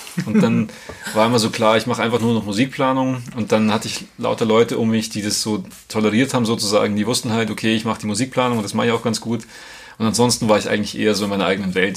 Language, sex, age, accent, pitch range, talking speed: German, male, 30-49, German, 105-120 Hz, 260 wpm